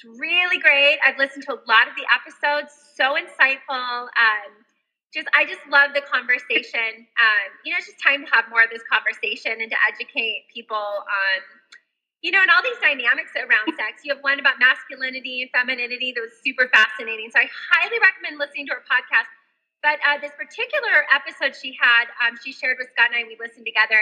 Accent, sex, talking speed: American, female, 200 wpm